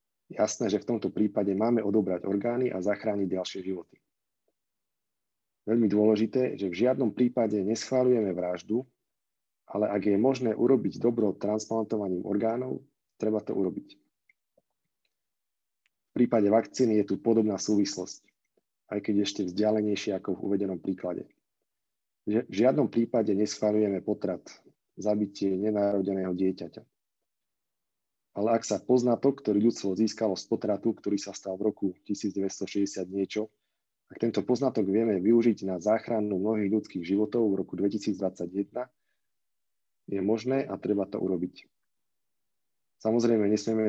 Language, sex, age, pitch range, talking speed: Slovak, male, 40-59, 100-115 Hz, 125 wpm